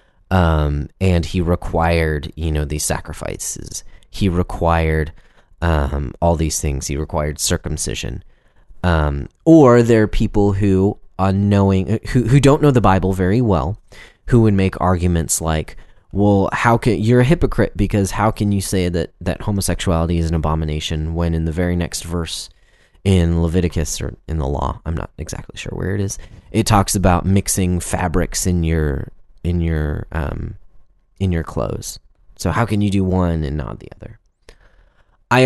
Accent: American